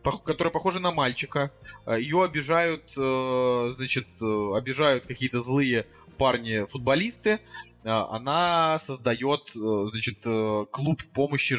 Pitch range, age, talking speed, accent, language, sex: 110-135 Hz, 20-39, 85 wpm, native, Russian, male